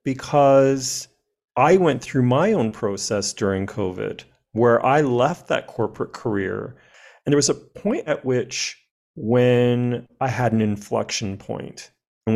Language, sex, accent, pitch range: English, male, American, 120-150 Hz